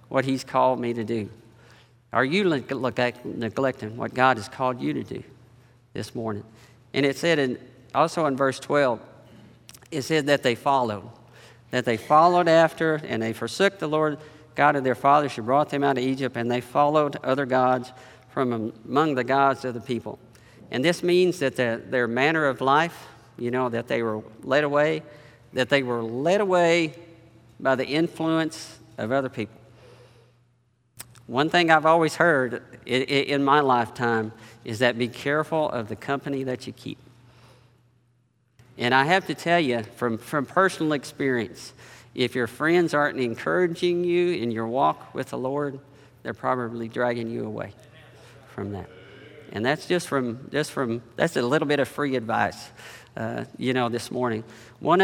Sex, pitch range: male, 120-150 Hz